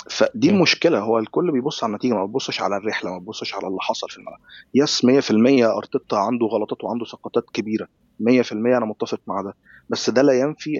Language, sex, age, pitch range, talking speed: Arabic, male, 30-49, 110-140 Hz, 195 wpm